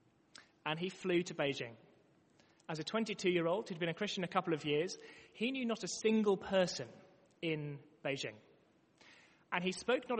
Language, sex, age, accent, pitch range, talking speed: English, male, 30-49, British, 170-225 Hz, 165 wpm